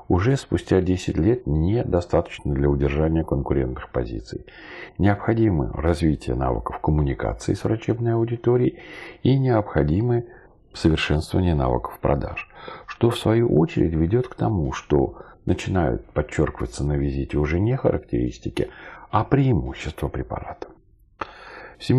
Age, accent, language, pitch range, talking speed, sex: 40-59, native, Russian, 70-95 Hz, 110 wpm, male